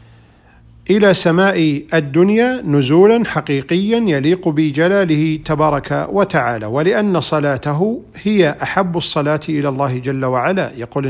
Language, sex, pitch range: Arabic, male, 140-185 Hz